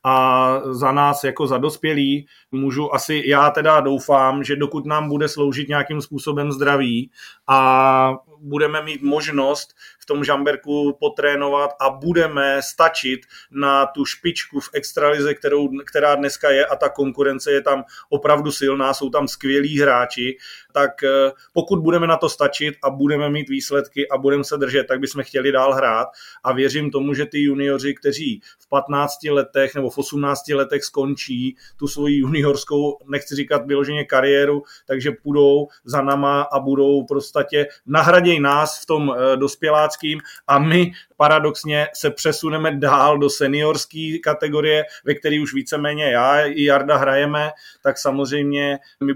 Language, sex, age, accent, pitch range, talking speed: Czech, male, 30-49, native, 140-150 Hz, 150 wpm